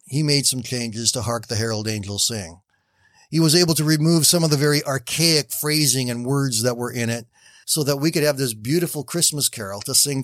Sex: male